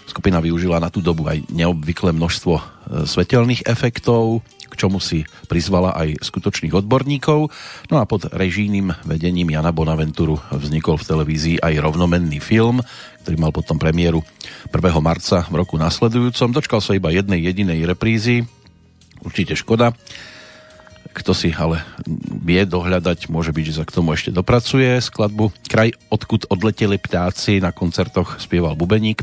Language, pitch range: Slovak, 80-110 Hz